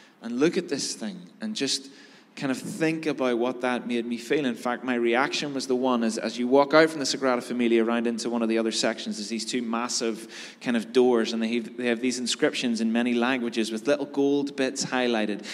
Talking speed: 235 wpm